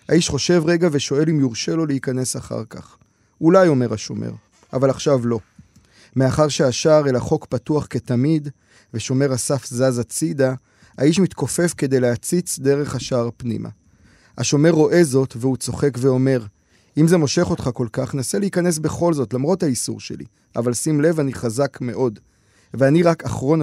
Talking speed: 155 wpm